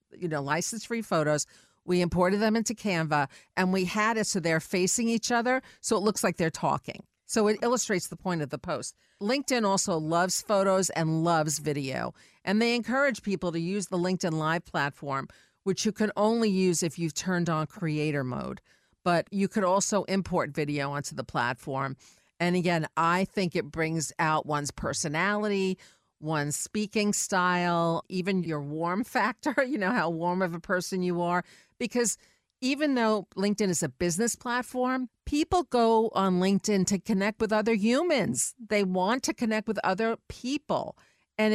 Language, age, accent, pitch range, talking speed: English, 50-69, American, 165-220 Hz, 170 wpm